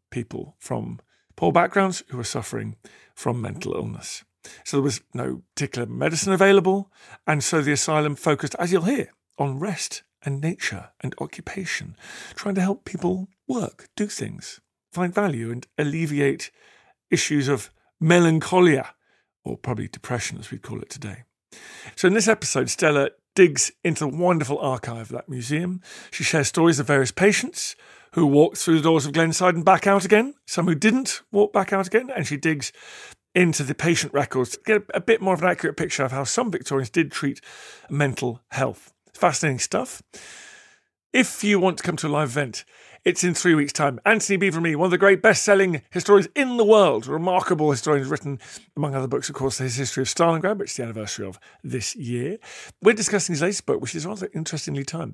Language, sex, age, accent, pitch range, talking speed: English, male, 40-59, British, 140-190 Hz, 190 wpm